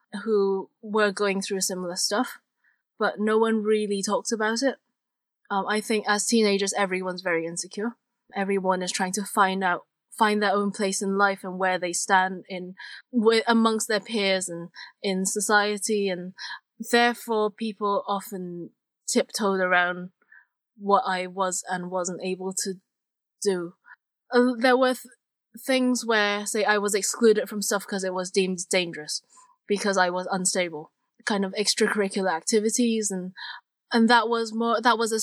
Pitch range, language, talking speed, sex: 190-235 Hz, English, 155 wpm, female